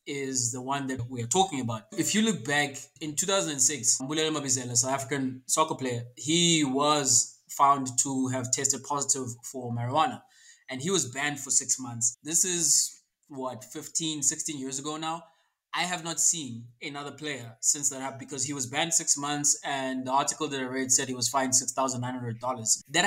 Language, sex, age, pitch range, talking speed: English, male, 20-39, 130-155 Hz, 180 wpm